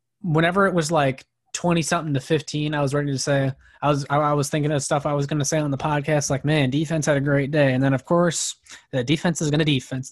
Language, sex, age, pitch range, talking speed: English, male, 20-39, 135-160 Hz, 265 wpm